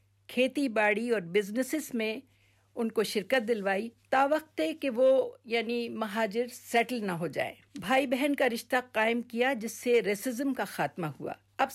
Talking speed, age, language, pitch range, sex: 160 wpm, 50-69, Urdu, 220-265 Hz, female